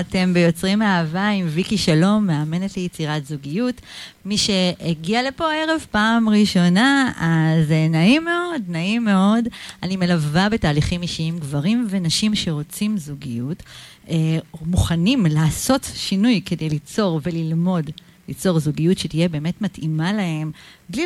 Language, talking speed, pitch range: Hebrew, 125 wpm, 160-225 Hz